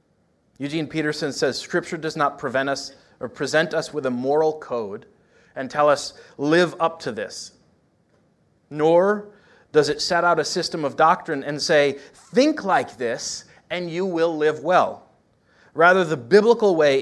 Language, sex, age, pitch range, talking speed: English, male, 30-49, 125-165 Hz, 160 wpm